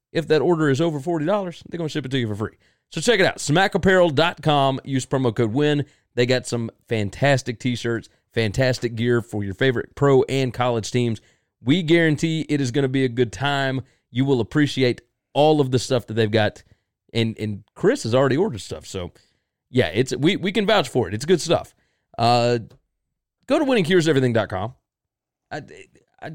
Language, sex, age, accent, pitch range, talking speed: English, male, 30-49, American, 120-170 Hz, 185 wpm